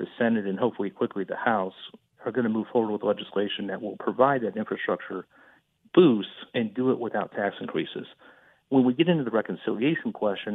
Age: 50-69